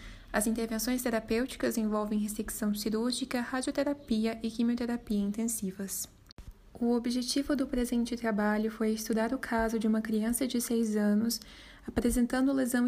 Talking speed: 125 wpm